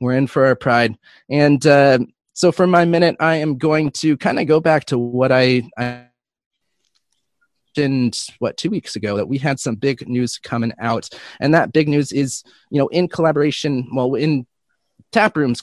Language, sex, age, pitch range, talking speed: English, male, 30-49, 120-150 Hz, 185 wpm